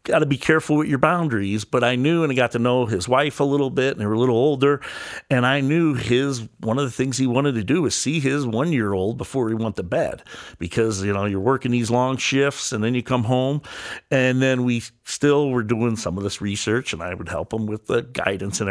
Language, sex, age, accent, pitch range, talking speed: English, male, 50-69, American, 115-145 Hz, 260 wpm